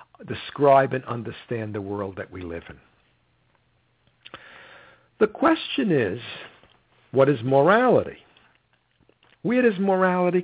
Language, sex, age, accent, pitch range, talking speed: English, male, 60-79, American, 115-175 Hz, 105 wpm